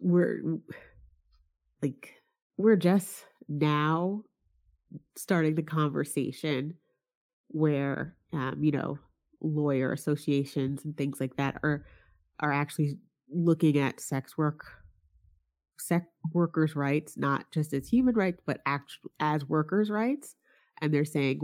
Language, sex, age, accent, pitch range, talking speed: English, female, 30-49, American, 140-180 Hz, 115 wpm